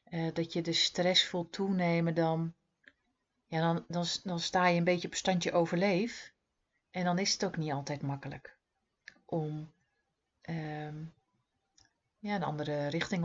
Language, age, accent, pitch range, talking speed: Dutch, 40-59, Dutch, 155-190 Hz, 150 wpm